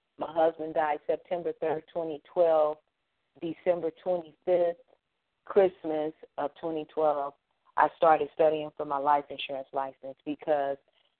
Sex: female